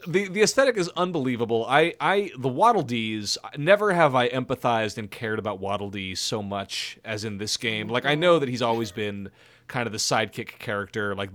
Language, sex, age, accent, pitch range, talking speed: English, male, 30-49, American, 110-145 Hz, 200 wpm